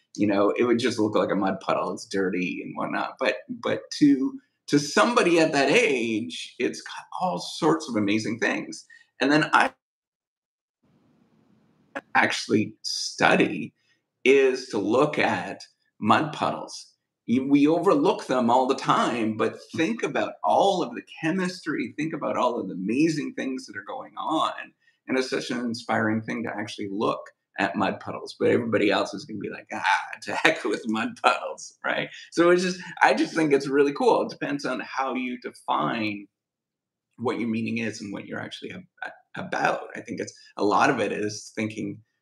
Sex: male